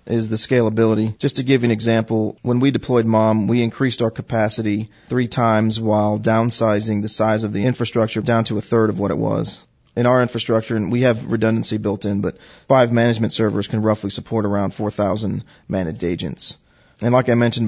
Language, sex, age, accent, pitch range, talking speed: English, male, 30-49, American, 110-120 Hz, 195 wpm